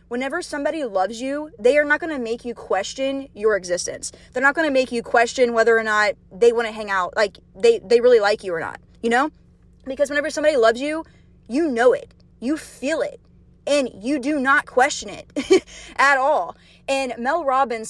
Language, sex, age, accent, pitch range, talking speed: English, female, 20-39, American, 230-300 Hz, 205 wpm